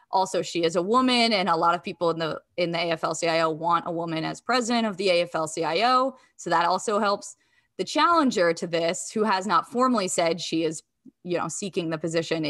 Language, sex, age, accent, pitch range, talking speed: English, female, 20-39, American, 165-205 Hz, 215 wpm